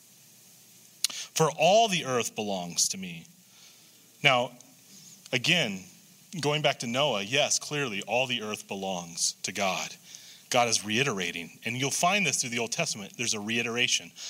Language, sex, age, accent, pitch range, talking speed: English, male, 30-49, American, 130-195 Hz, 145 wpm